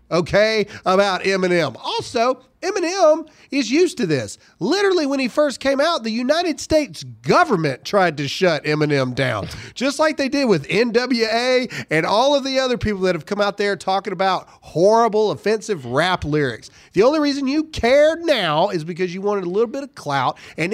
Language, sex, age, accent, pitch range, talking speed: English, male, 40-59, American, 180-275 Hz, 180 wpm